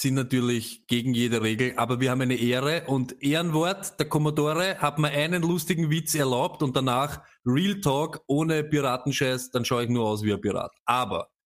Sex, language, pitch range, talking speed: male, German, 130-170 Hz, 185 wpm